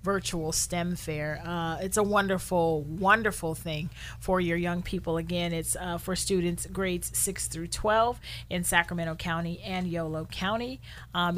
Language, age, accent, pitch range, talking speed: English, 30-49, American, 170-195 Hz, 155 wpm